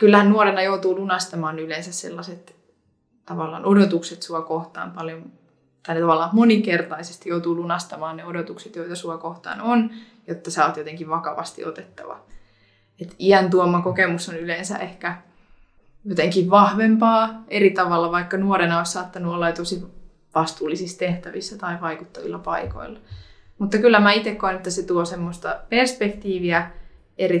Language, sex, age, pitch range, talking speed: Finnish, female, 20-39, 170-200 Hz, 135 wpm